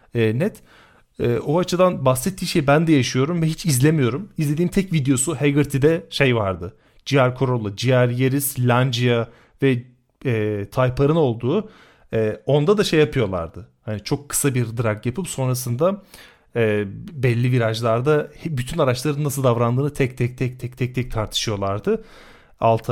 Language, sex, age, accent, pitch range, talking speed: Turkish, male, 40-59, native, 110-145 Hz, 140 wpm